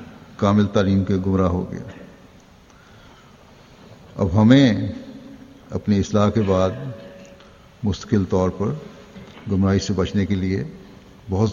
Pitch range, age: 95-115 Hz, 60-79